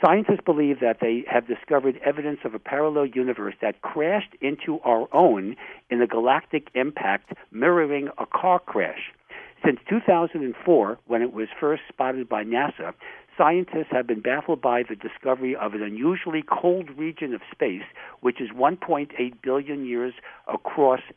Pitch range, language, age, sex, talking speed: 120-155 Hz, English, 60-79, male, 150 wpm